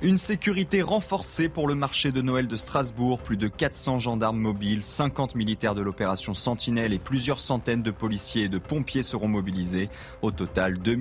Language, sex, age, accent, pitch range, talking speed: French, male, 20-39, French, 100-130 Hz, 180 wpm